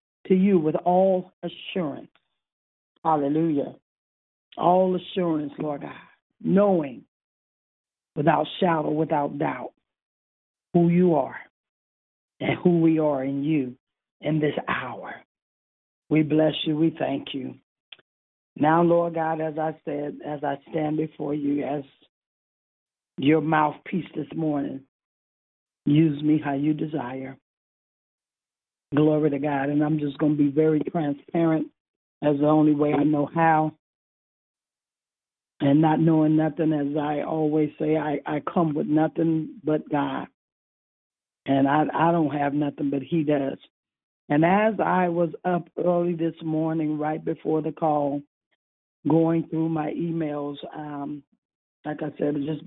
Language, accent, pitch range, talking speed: English, American, 140-160 Hz, 135 wpm